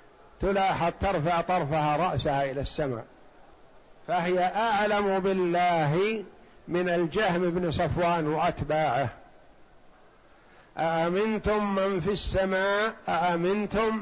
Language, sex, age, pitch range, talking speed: Arabic, male, 50-69, 160-195 Hz, 80 wpm